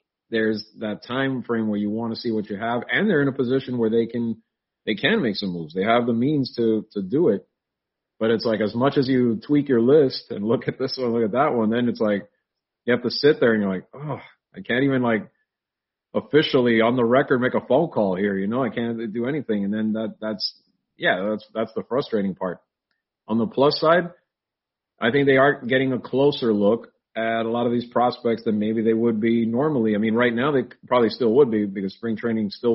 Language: English